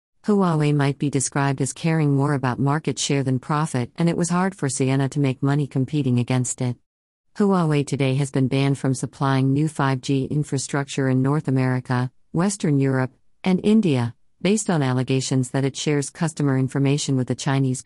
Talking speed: 175 wpm